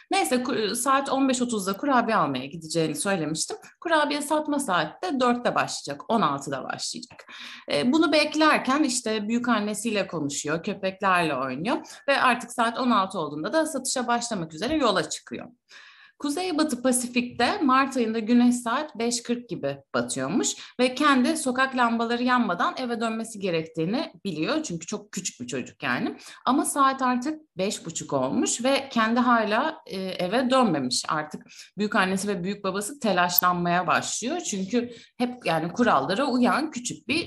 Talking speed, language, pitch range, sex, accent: 135 wpm, Turkish, 180-260 Hz, female, native